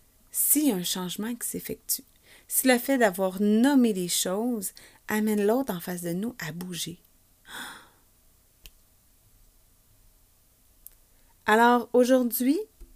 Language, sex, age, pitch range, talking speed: French, female, 30-49, 175-230 Hz, 100 wpm